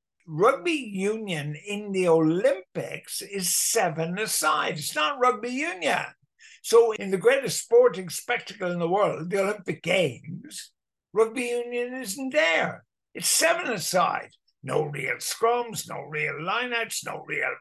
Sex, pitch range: male, 175-245 Hz